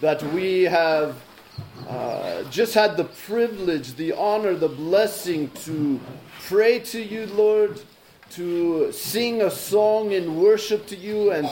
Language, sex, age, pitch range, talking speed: English, male, 30-49, 170-215 Hz, 135 wpm